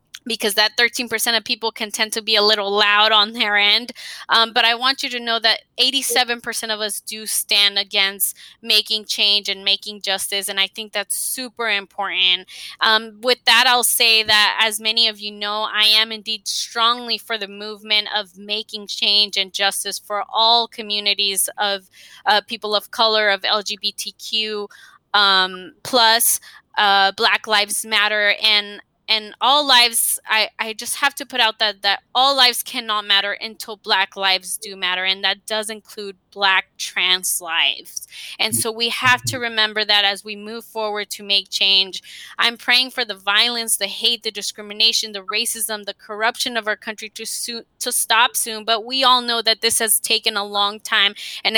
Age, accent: 20-39, American